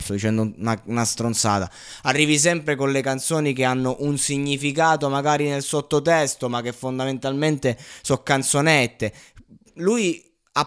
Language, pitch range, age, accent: Italian, 125-170 Hz, 20-39, native